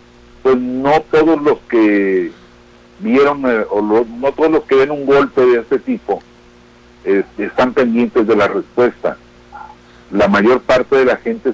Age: 60-79